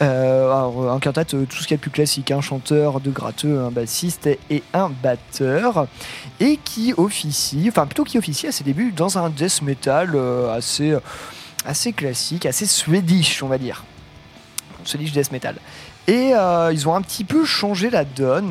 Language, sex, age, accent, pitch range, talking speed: French, male, 30-49, French, 130-165 Hz, 195 wpm